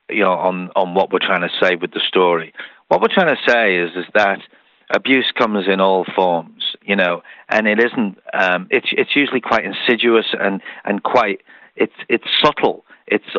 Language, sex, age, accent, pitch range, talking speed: English, male, 50-69, British, 100-130 Hz, 195 wpm